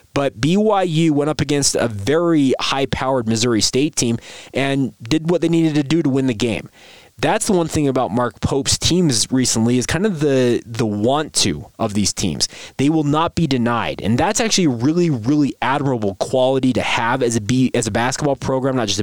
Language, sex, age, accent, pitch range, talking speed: English, male, 20-39, American, 125-155 Hz, 205 wpm